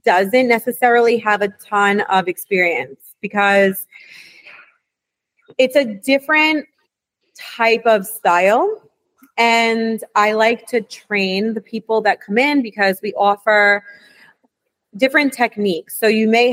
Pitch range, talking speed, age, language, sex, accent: 195-230 Hz, 115 wpm, 30-49, English, female, American